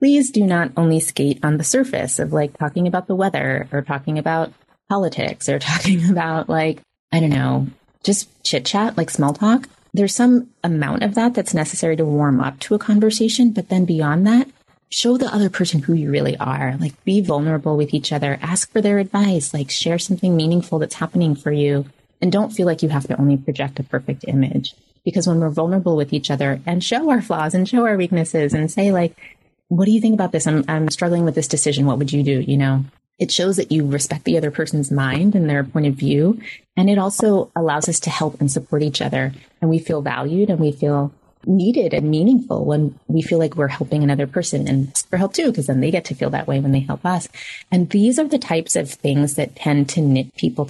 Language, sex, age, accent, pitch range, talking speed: English, female, 30-49, American, 145-190 Hz, 230 wpm